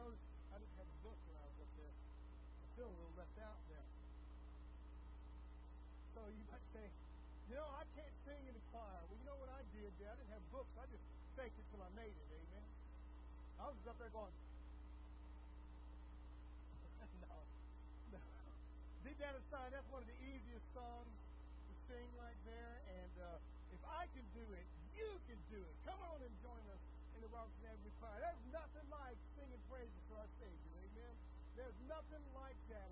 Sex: male